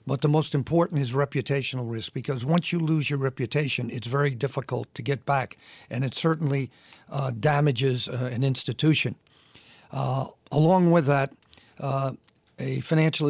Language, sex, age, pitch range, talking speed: English, male, 50-69, 125-150 Hz, 155 wpm